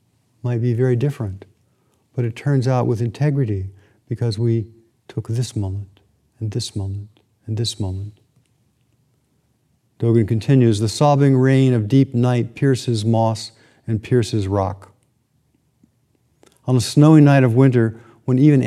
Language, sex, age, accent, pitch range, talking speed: English, male, 50-69, American, 105-130 Hz, 135 wpm